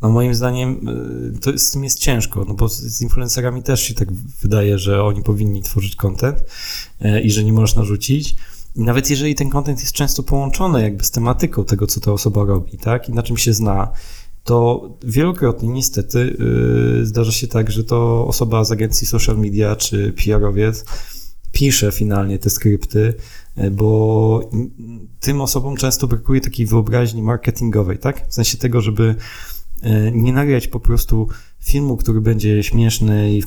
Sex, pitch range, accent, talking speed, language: male, 105-125 Hz, native, 165 wpm, Polish